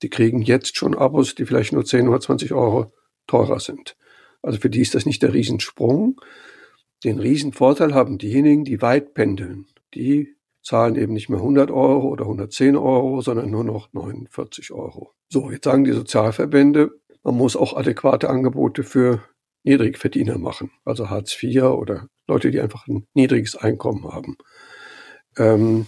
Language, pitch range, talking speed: German, 115-140 Hz, 160 wpm